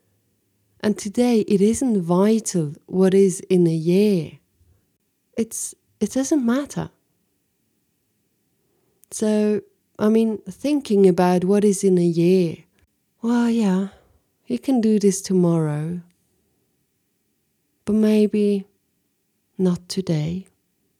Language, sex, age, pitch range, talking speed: English, female, 30-49, 170-205 Hz, 100 wpm